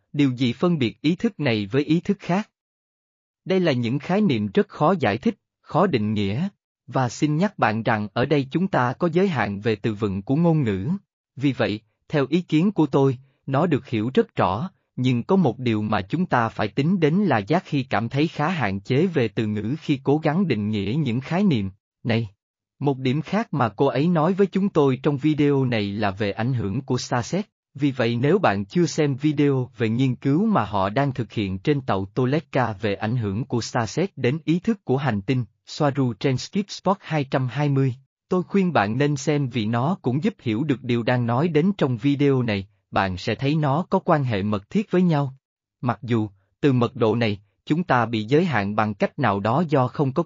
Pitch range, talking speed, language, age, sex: 115-155 Hz, 220 wpm, Vietnamese, 20-39, male